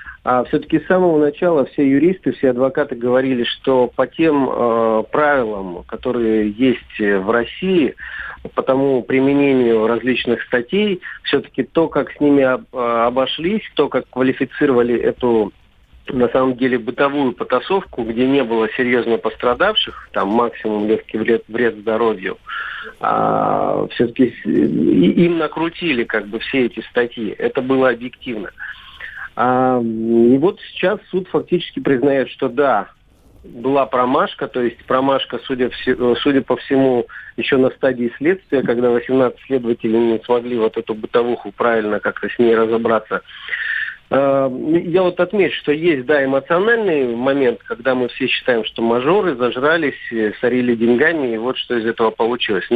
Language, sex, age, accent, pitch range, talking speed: Russian, male, 40-59, native, 115-140 Hz, 135 wpm